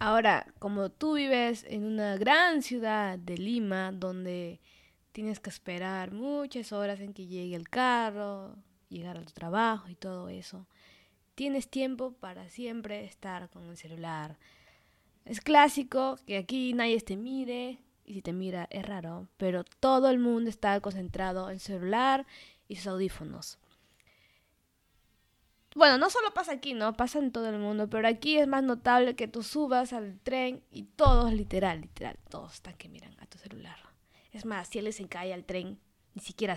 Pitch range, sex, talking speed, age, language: 185-245 Hz, female, 165 wpm, 20-39, English